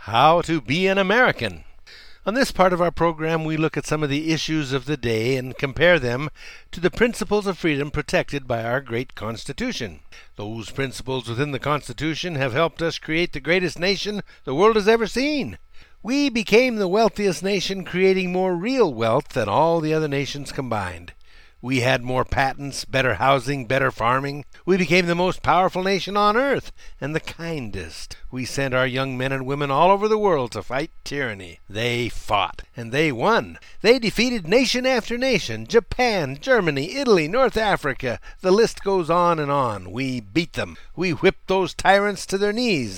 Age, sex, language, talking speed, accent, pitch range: 60-79, male, English, 180 wpm, American, 135-195 Hz